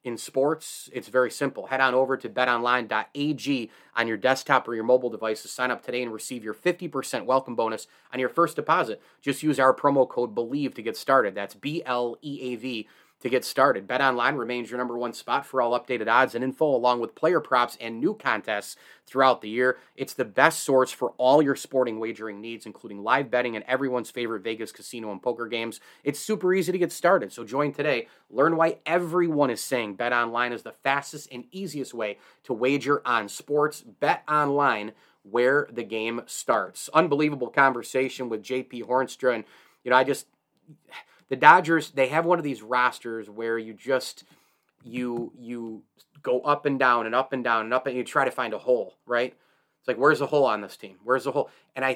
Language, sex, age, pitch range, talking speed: English, male, 30-49, 115-140 Hz, 200 wpm